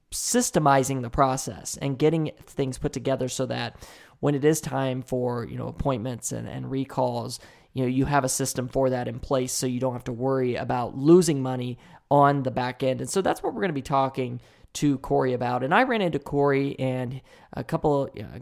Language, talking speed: English, 220 wpm